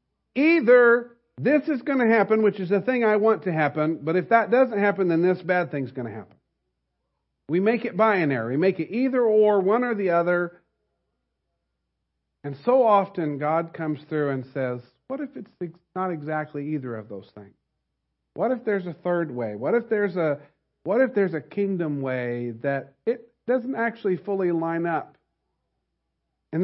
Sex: male